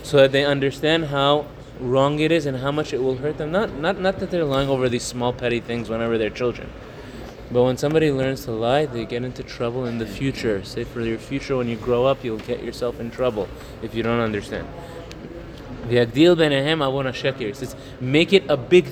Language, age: English, 20-39